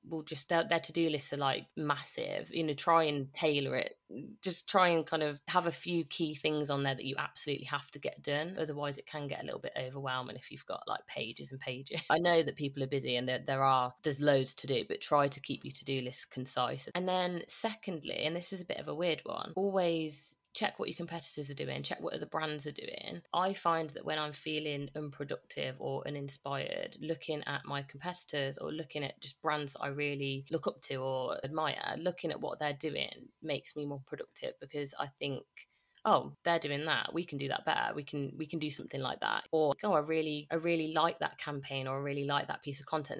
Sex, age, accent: female, 20-39, British